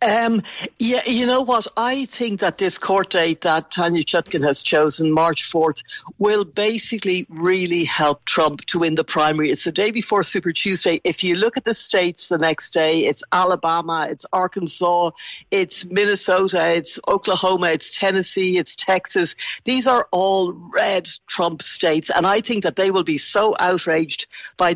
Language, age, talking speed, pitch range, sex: English, 60-79, 170 wpm, 170-205 Hz, female